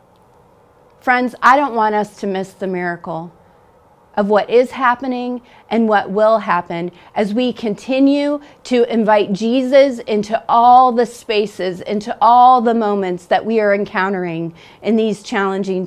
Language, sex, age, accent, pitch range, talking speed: English, female, 40-59, American, 200-245 Hz, 145 wpm